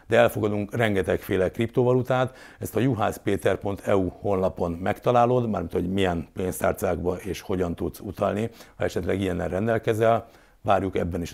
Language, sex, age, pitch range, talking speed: Hungarian, male, 60-79, 95-115 Hz, 125 wpm